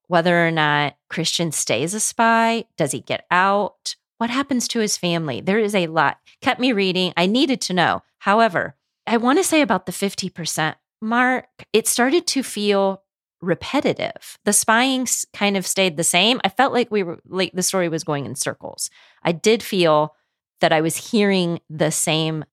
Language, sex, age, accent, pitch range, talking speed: English, female, 30-49, American, 165-230 Hz, 185 wpm